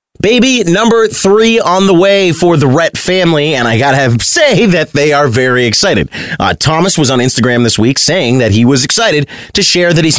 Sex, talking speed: male, 210 wpm